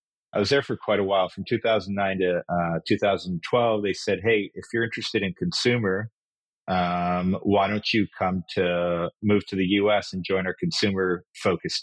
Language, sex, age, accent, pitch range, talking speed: English, male, 40-59, American, 85-105 Hz, 170 wpm